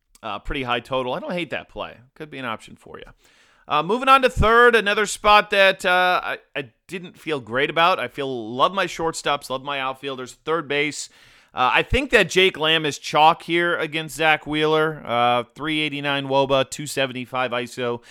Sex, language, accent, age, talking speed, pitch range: male, English, American, 30-49, 190 wpm, 120-150 Hz